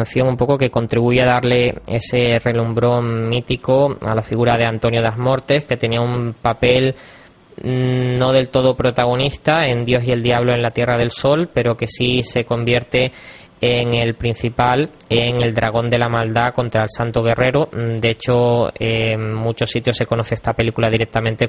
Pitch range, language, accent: 115-130 Hz, Spanish, Spanish